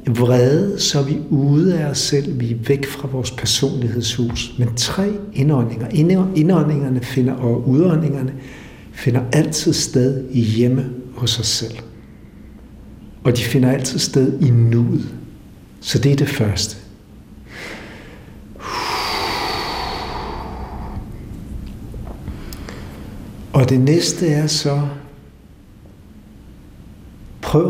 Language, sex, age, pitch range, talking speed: Danish, male, 60-79, 110-140 Hz, 95 wpm